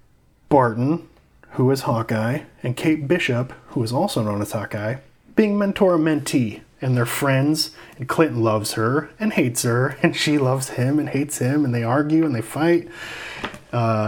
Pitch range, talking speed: 120-150 Hz, 170 wpm